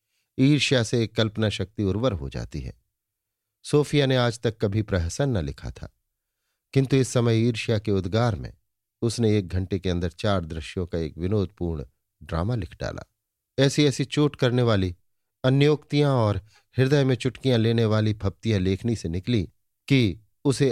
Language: Hindi